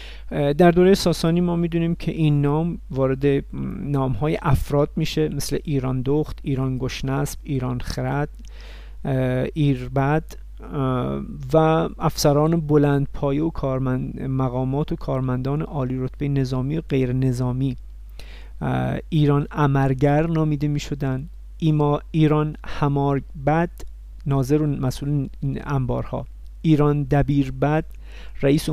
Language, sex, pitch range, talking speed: Persian, male, 130-155 Hz, 105 wpm